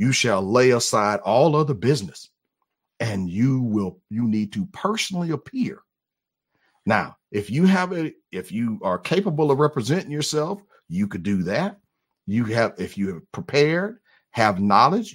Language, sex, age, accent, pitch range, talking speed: English, male, 50-69, American, 125-190 Hz, 155 wpm